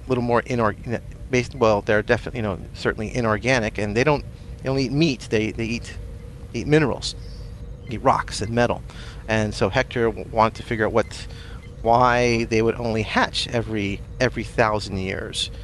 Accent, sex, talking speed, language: American, male, 175 wpm, English